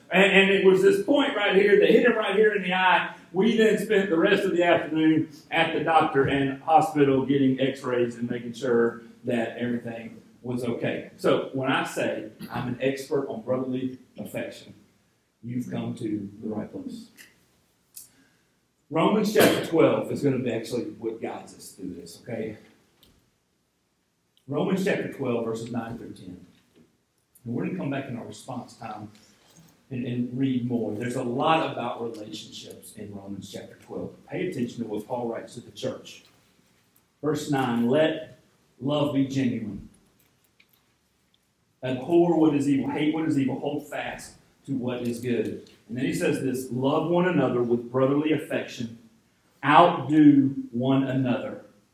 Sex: male